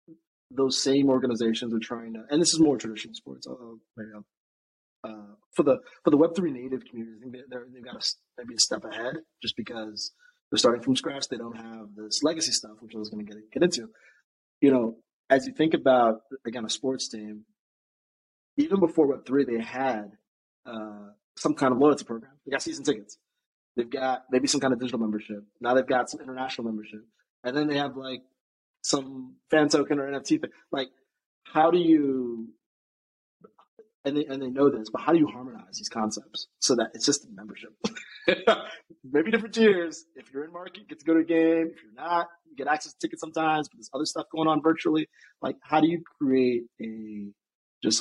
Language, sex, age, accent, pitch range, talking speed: English, male, 20-39, American, 110-150 Hz, 200 wpm